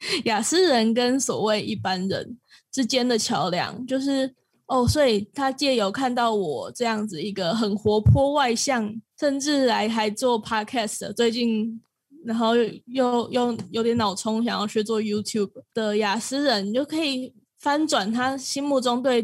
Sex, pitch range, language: female, 205-250 Hz, Chinese